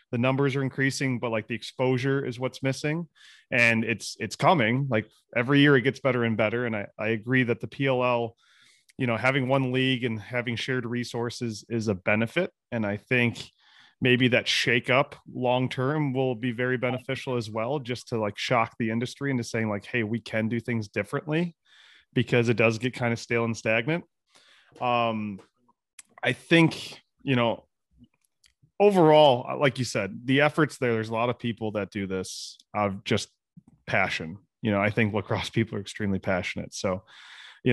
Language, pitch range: English, 115-135 Hz